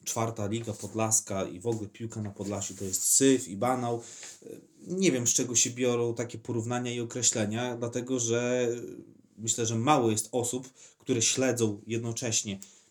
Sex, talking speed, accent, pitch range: male, 160 wpm, native, 110-130 Hz